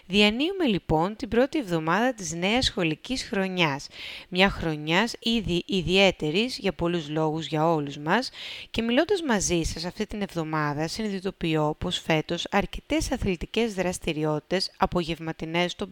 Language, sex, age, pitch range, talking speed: Greek, female, 30-49, 165-220 Hz, 125 wpm